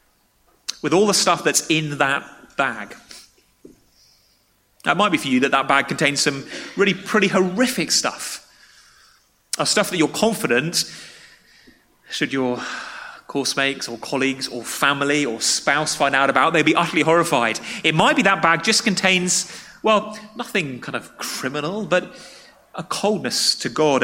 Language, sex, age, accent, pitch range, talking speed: English, male, 30-49, British, 135-180 Hz, 155 wpm